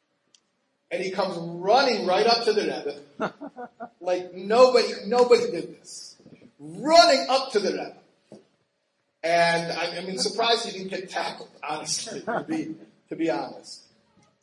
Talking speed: 135 wpm